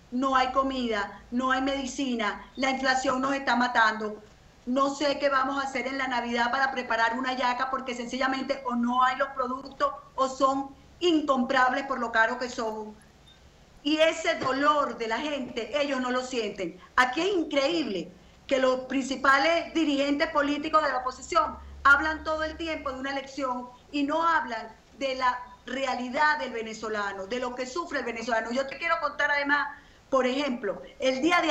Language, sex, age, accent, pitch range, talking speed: Spanish, female, 40-59, American, 255-285 Hz, 175 wpm